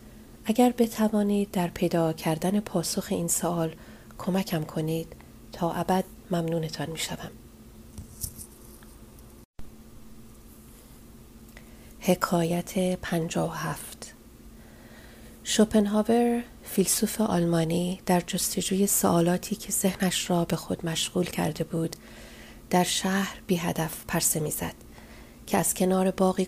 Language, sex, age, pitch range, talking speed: Persian, female, 30-49, 165-190 Hz, 90 wpm